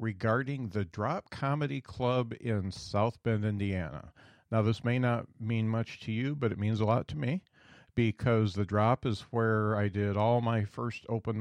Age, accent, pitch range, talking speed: 40-59, American, 105-120 Hz, 185 wpm